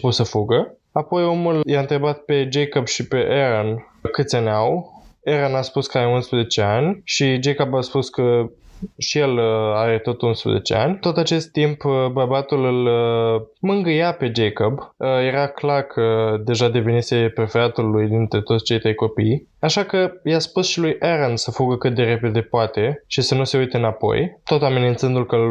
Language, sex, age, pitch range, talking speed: Romanian, male, 20-39, 120-155 Hz, 175 wpm